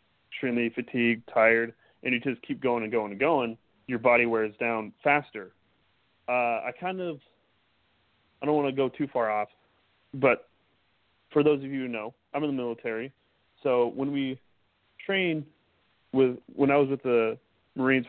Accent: American